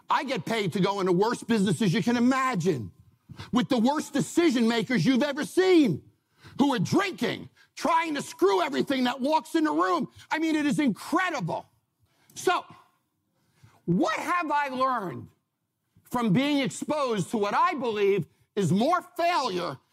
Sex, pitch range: male, 190-315 Hz